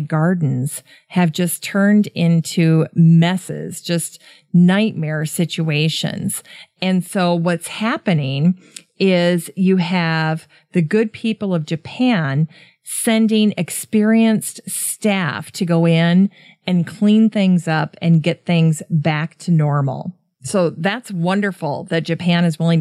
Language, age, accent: English, 40-59, American